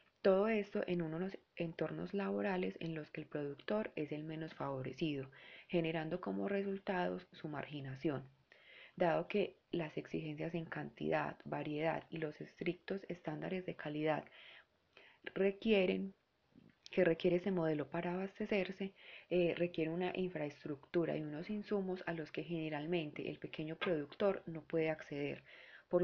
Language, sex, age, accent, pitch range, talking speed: Spanish, female, 20-39, Colombian, 150-185 Hz, 135 wpm